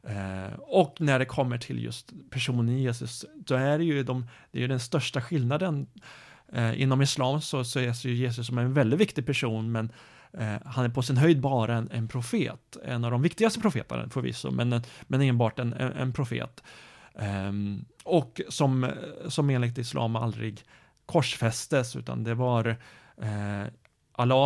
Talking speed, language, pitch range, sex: 180 wpm, Swedish, 120-140 Hz, male